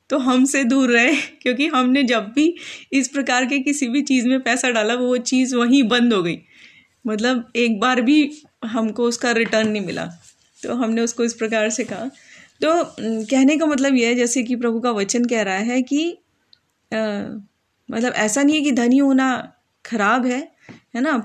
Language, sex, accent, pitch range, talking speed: English, female, Indian, 225-290 Hz, 190 wpm